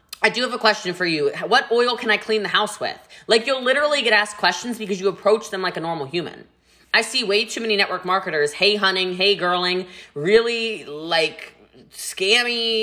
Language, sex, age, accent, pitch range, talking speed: English, female, 20-39, American, 180-220 Hz, 200 wpm